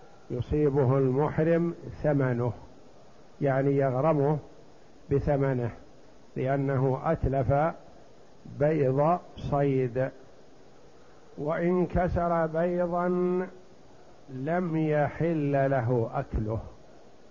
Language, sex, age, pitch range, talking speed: Arabic, male, 60-79, 140-175 Hz, 60 wpm